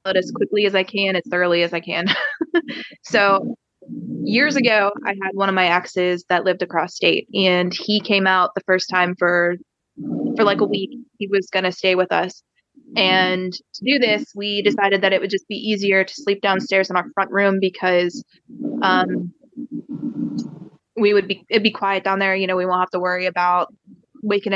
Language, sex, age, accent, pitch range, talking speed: English, female, 20-39, American, 185-215 Hz, 195 wpm